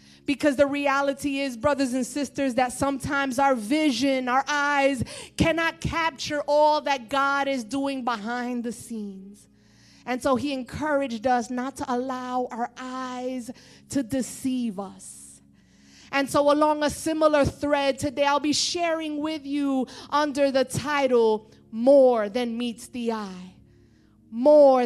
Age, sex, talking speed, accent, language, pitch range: 30-49, female, 140 wpm, American, English, 245-280 Hz